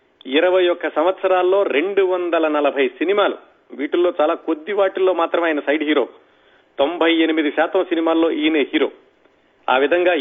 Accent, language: native, Telugu